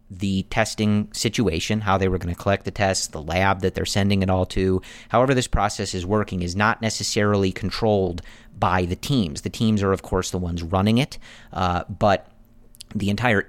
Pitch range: 95-110 Hz